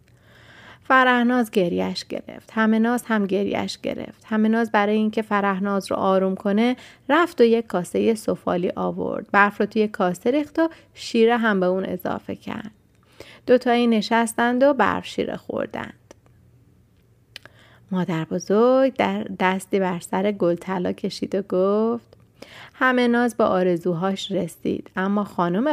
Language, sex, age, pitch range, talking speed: Persian, female, 30-49, 190-235 Hz, 130 wpm